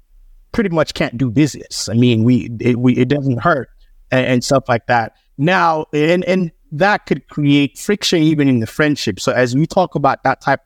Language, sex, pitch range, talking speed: English, male, 120-155 Hz, 205 wpm